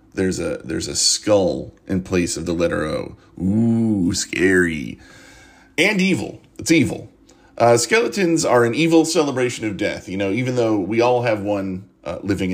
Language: English